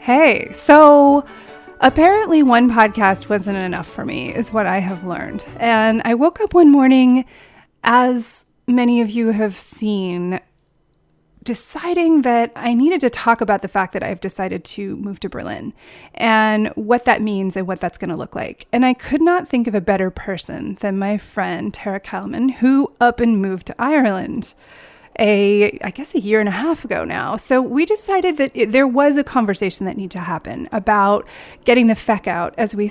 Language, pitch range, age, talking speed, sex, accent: English, 190-250 Hz, 30-49, 185 wpm, female, American